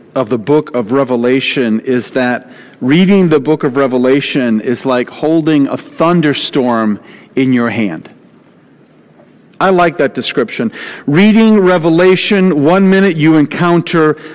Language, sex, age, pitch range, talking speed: English, male, 50-69, 140-195 Hz, 125 wpm